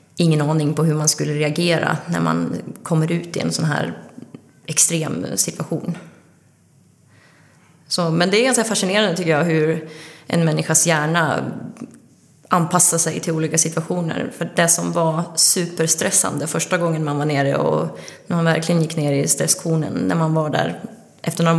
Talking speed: 160 wpm